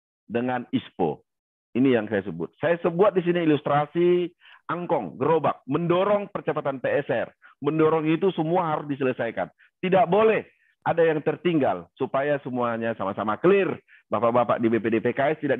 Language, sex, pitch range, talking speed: Indonesian, male, 120-160 Hz, 130 wpm